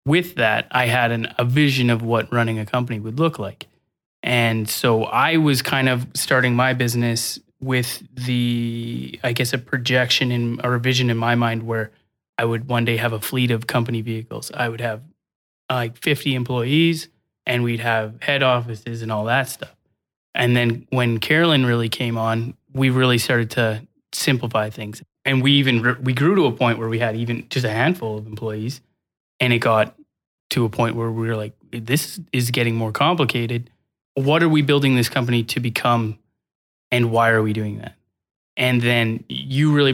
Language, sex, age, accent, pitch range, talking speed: English, male, 20-39, American, 115-130 Hz, 190 wpm